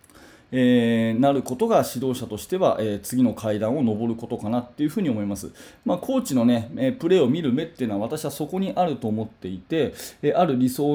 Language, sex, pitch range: Japanese, male, 120-175 Hz